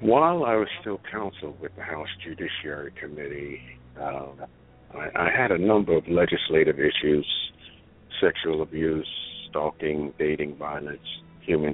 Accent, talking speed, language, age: American, 130 wpm, English, 60-79